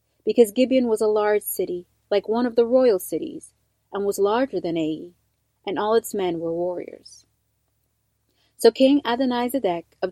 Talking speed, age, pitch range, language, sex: 160 wpm, 30-49, 180-240 Hz, English, female